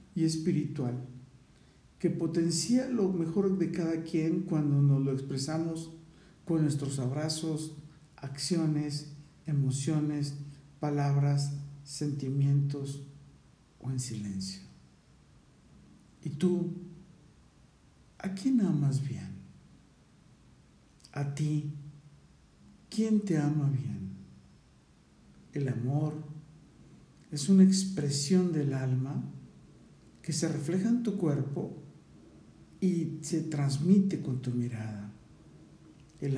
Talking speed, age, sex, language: 90 wpm, 60-79, male, Spanish